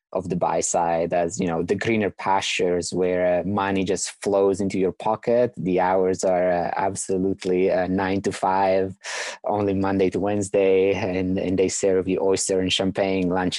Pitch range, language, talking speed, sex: 90-100 Hz, English, 175 wpm, male